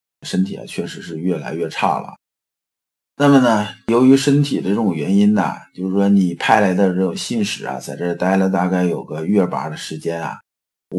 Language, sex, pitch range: Chinese, male, 90-140 Hz